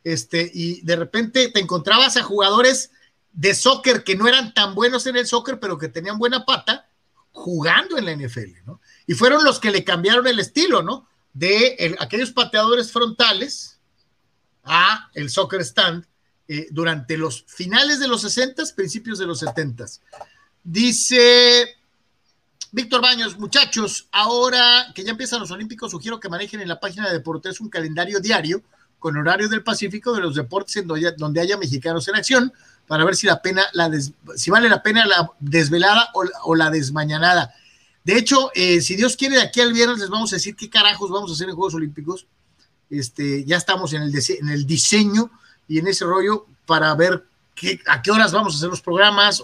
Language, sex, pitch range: Spanish, male, 165-230 Hz